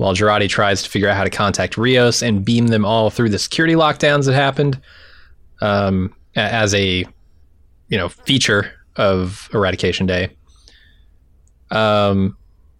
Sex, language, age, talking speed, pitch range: male, English, 20-39, 140 wpm, 90-130 Hz